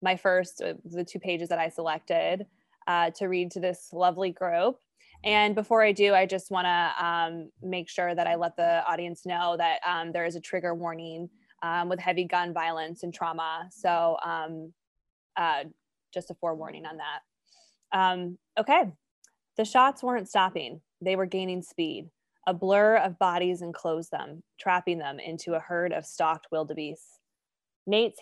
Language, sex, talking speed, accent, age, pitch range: English, female, 165 wpm, American, 20-39, 165-195 Hz